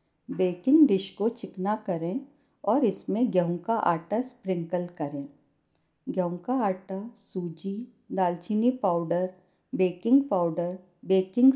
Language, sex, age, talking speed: Hindi, female, 50-69, 110 wpm